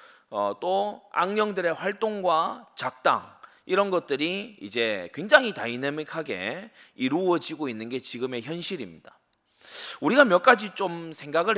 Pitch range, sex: 130-220 Hz, male